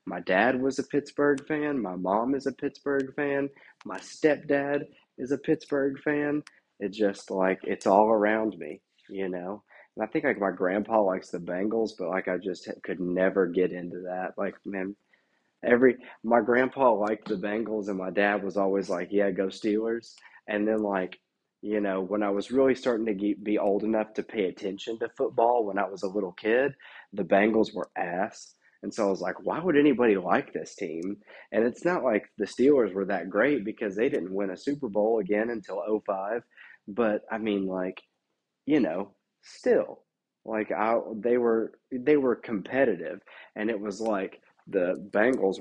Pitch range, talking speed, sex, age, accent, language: 95-125 Hz, 185 wpm, male, 30-49, American, English